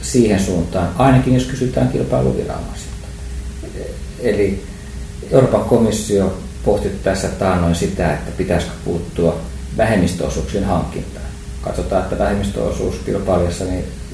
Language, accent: Finnish, native